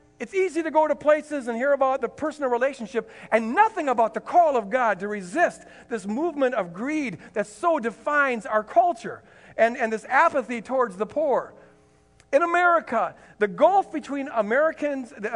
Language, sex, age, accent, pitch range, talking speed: English, male, 50-69, American, 215-285 Hz, 170 wpm